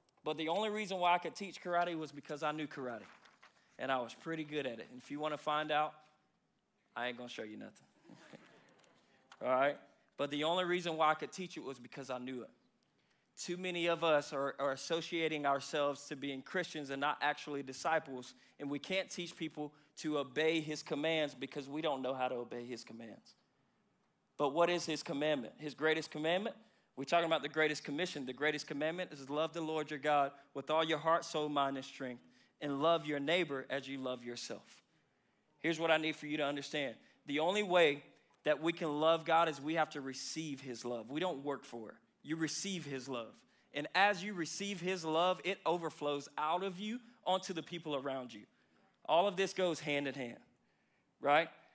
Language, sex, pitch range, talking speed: English, male, 140-175 Hz, 210 wpm